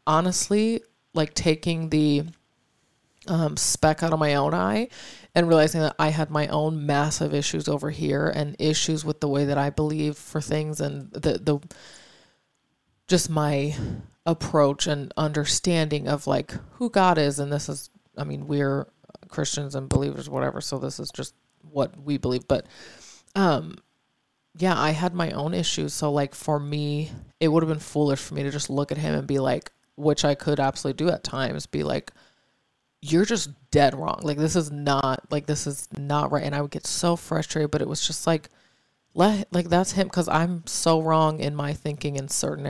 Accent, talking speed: American, 190 wpm